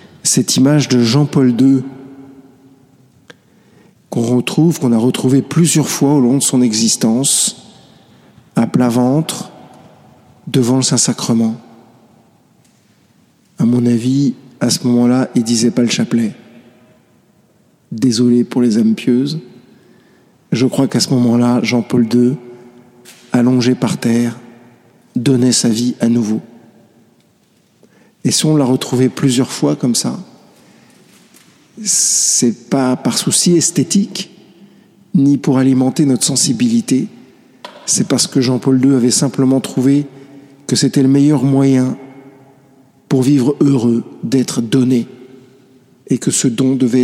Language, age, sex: French, 50-69, male